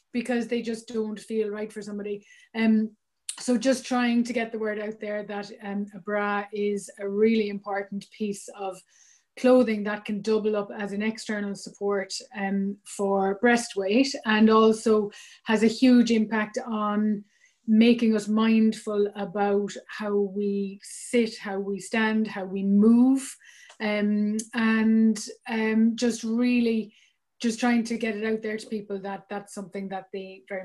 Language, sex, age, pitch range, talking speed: English, female, 30-49, 200-225 Hz, 160 wpm